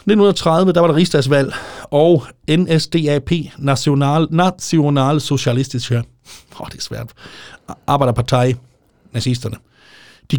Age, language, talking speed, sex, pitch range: 30-49, Danish, 80 wpm, male, 120-155 Hz